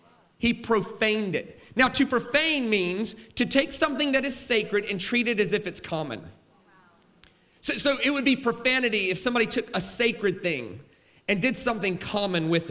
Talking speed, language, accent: 175 wpm, English, American